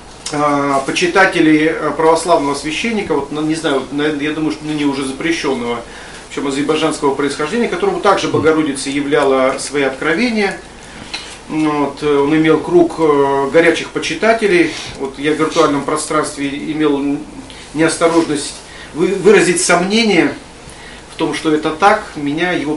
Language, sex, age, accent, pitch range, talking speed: Russian, male, 40-59, native, 140-175 Hz, 115 wpm